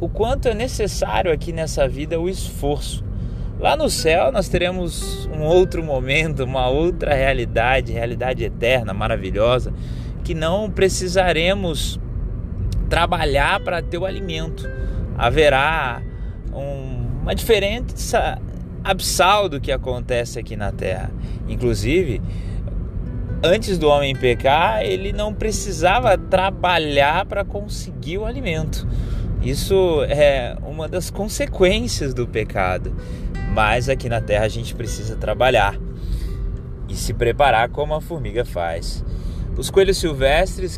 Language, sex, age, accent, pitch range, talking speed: Portuguese, male, 20-39, Brazilian, 110-160 Hz, 115 wpm